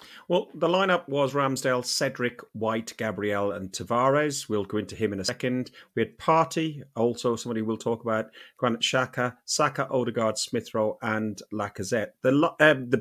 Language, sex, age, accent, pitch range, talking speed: English, male, 30-49, British, 105-135 Hz, 160 wpm